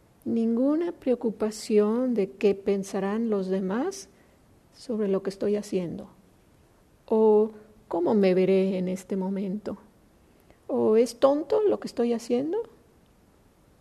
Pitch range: 200-230 Hz